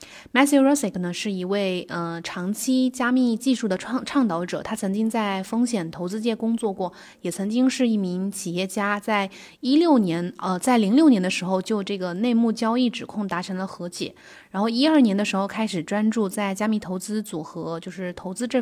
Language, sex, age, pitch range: Chinese, female, 20-39, 185-225 Hz